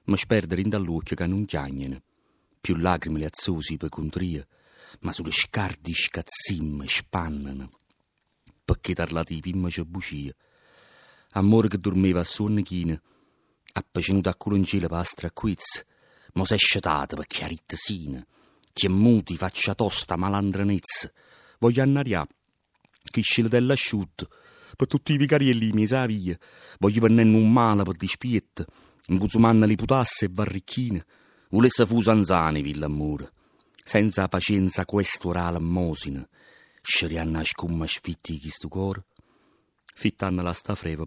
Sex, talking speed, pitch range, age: male, 135 wpm, 85-110 Hz, 40-59